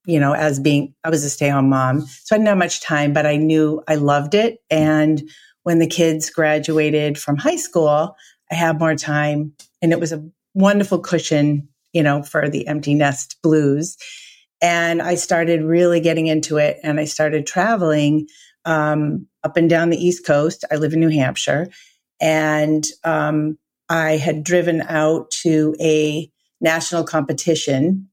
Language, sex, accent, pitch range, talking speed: English, female, American, 145-165 Hz, 170 wpm